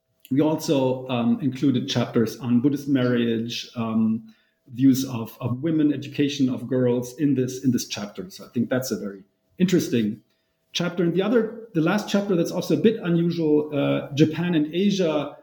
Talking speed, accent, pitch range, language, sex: 170 wpm, German, 125-150 Hz, English, male